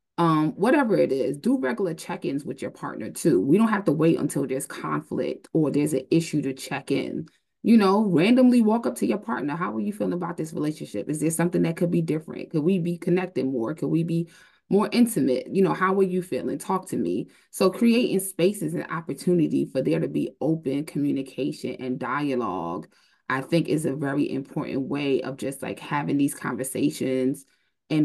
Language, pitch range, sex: English, 135-185 Hz, female